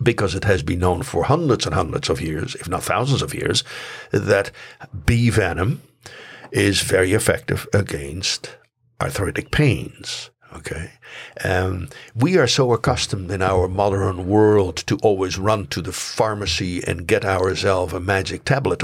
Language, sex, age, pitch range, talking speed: English, male, 60-79, 95-115 Hz, 150 wpm